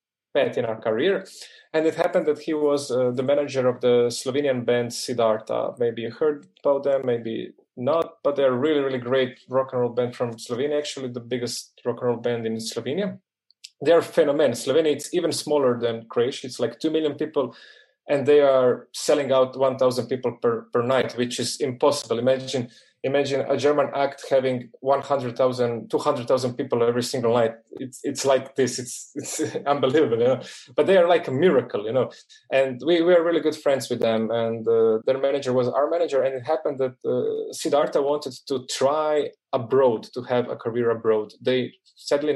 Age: 30-49